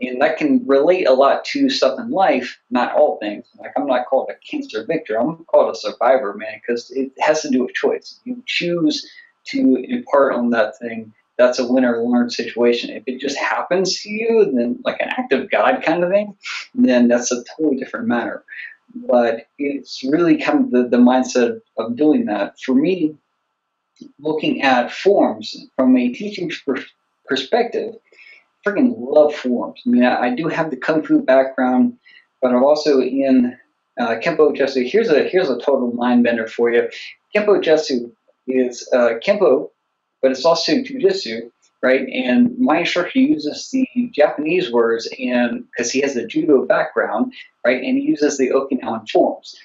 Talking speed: 175 wpm